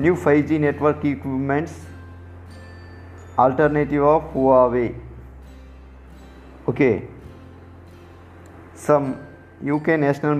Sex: male